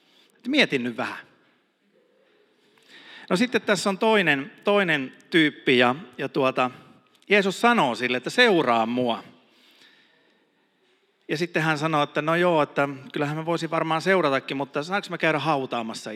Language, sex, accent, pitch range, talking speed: Finnish, male, native, 130-170 Hz, 135 wpm